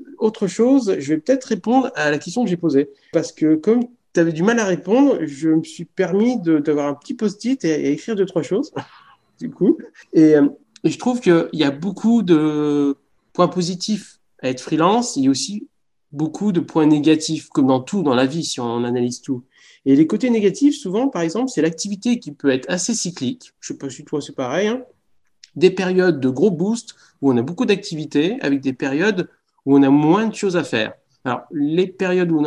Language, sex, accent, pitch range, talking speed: French, male, French, 150-210 Hz, 220 wpm